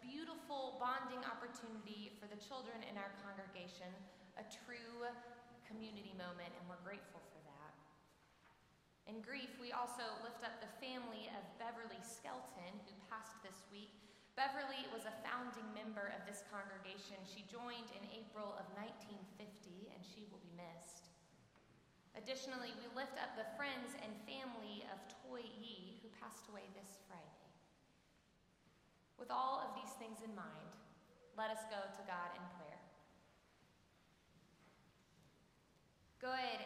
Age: 20-39